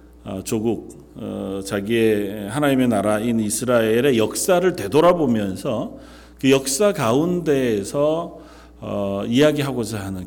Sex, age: male, 40-59